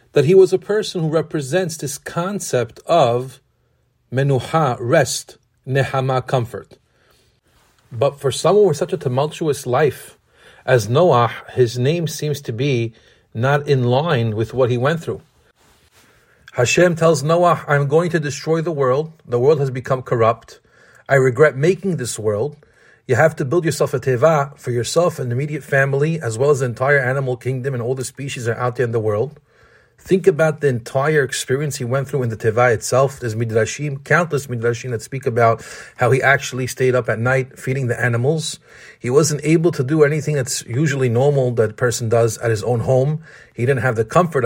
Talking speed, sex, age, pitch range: 185 wpm, male, 40-59, 125-155 Hz